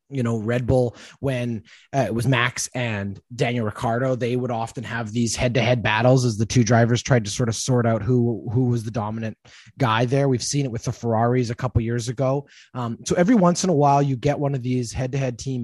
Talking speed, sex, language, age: 235 wpm, male, English, 20-39